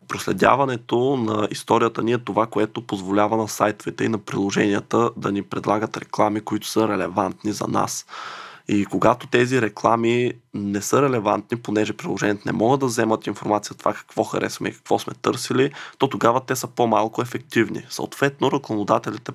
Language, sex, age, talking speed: Bulgarian, male, 20-39, 160 wpm